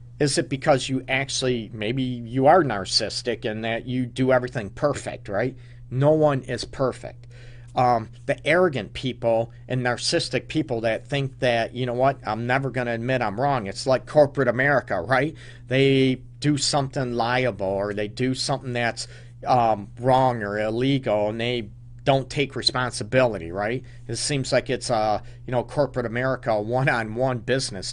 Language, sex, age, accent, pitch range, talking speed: English, male, 40-59, American, 120-135 Hz, 160 wpm